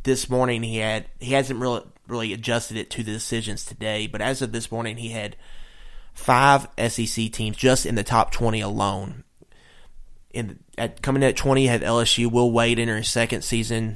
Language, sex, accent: English, male, American